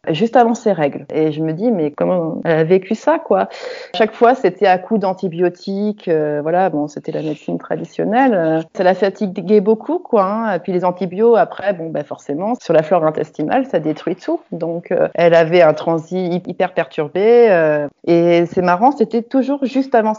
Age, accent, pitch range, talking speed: 30-49, French, 170-220 Hz, 200 wpm